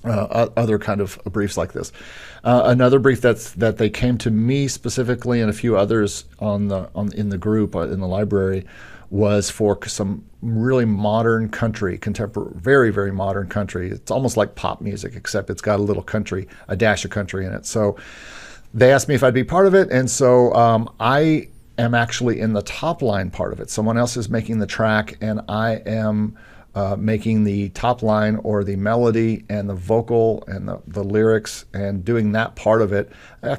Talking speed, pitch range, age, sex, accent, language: 200 wpm, 100-115 Hz, 50-69, male, American, English